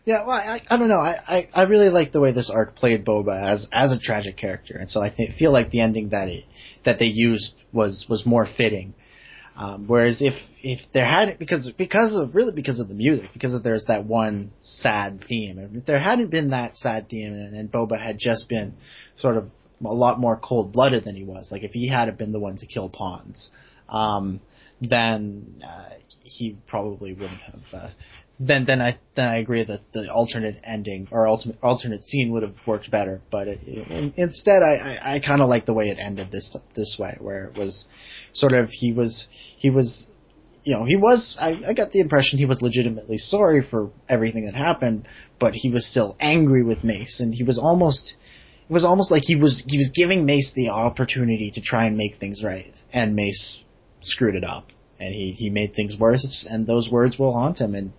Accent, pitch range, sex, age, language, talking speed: American, 105-135 Hz, male, 30-49, English, 215 wpm